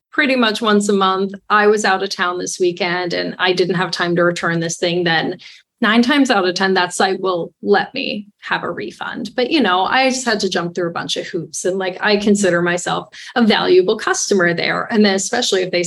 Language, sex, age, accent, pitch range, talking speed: English, female, 30-49, American, 190-215 Hz, 235 wpm